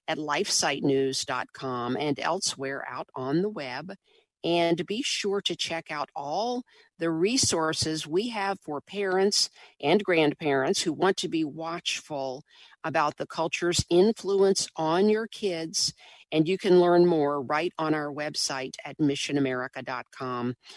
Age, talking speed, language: 50-69, 135 wpm, English